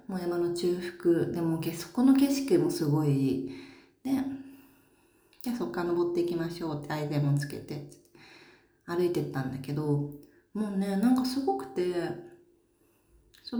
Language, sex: Japanese, female